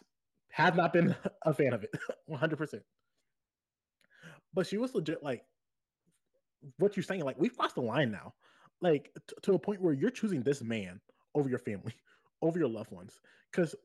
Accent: American